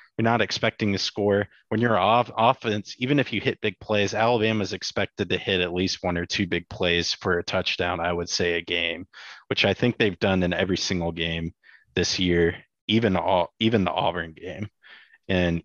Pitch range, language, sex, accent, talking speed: 85-105 Hz, English, male, American, 200 wpm